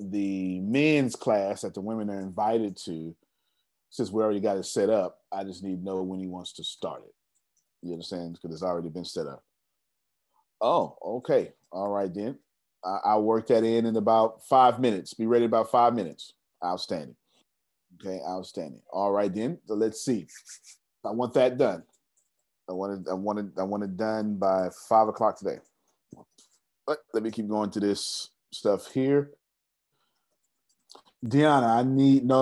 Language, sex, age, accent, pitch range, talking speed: English, male, 30-49, American, 95-125 Hz, 170 wpm